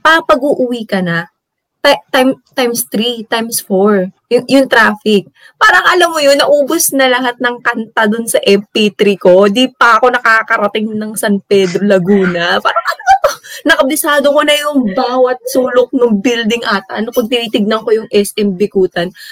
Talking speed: 170 wpm